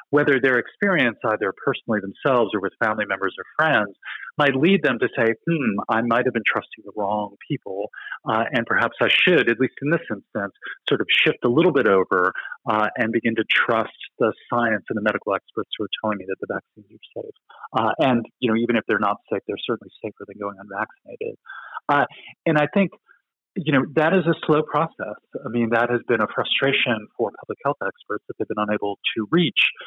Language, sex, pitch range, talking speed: English, male, 110-170 Hz, 215 wpm